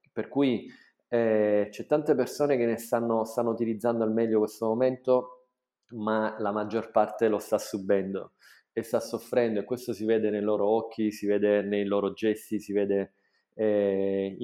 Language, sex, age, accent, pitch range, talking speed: Italian, male, 20-39, native, 105-115 Hz, 165 wpm